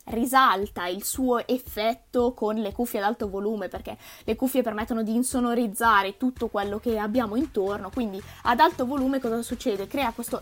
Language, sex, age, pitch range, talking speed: Italian, female, 20-39, 215-260 Hz, 165 wpm